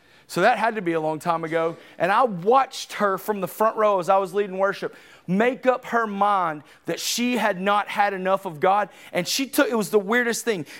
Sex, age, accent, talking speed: male, 30-49, American, 235 wpm